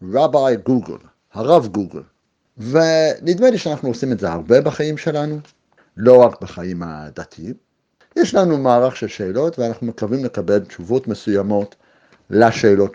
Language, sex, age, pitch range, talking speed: Hebrew, male, 60-79, 110-165 Hz, 130 wpm